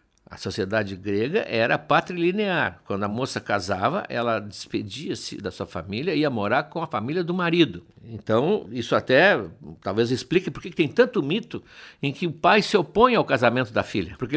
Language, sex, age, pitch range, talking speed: Portuguese, male, 60-79, 115-185 Hz, 180 wpm